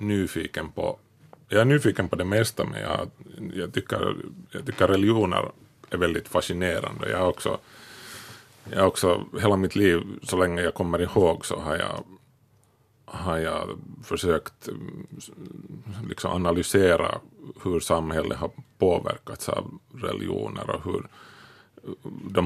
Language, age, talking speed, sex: Finnish, 30-49, 130 wpm, male